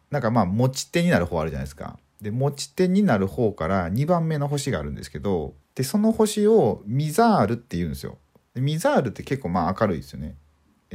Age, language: 40-59, Japanese